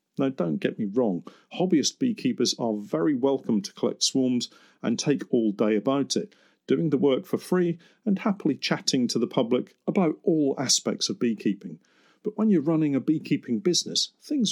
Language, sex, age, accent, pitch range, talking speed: English, male, 50-69, British, 115-170 Hz, 180 wpm